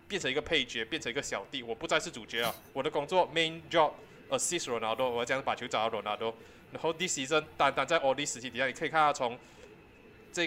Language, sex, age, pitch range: Chinese, male, 20-39, 130-170 Hz